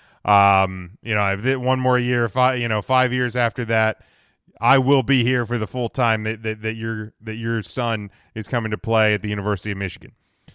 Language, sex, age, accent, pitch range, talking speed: English, male, 20-39, American, 110-140 Hz, 210 wpm